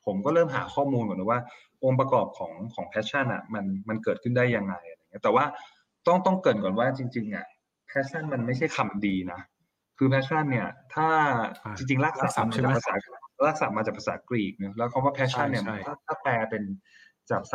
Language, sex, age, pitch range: Thai, male, 20-39, 110-140 Hz